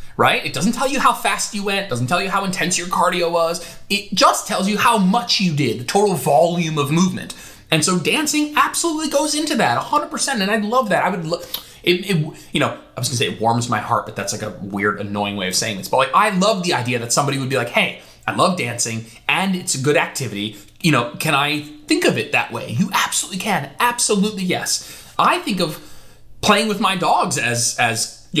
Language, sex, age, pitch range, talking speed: English, male, 20-39, 115-195 Hz, 235 wpm